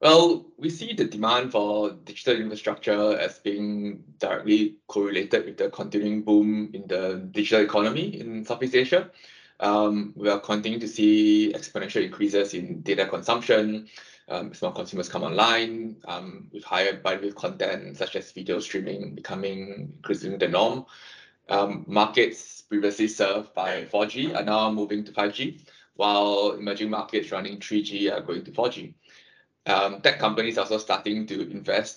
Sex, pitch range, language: male, 105-115 Hz, English